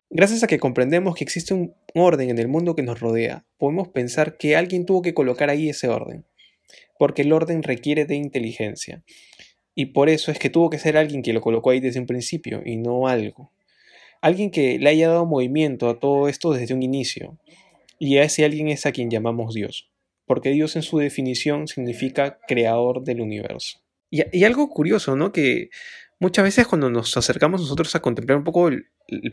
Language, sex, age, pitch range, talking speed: Spanish, male, 20-39, 125-170 Hz, 200 wpm